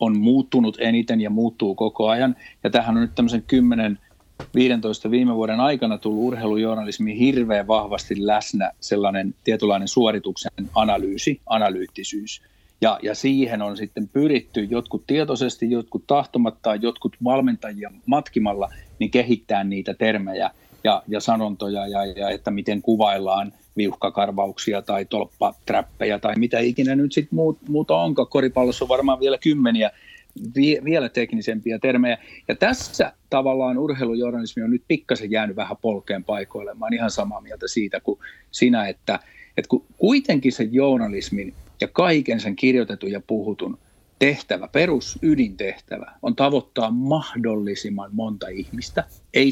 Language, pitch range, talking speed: Finnish, 105-135 Hz, 130 wpm